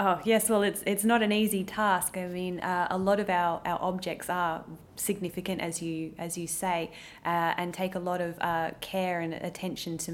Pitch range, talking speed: 165-185 Hz, 215 wpm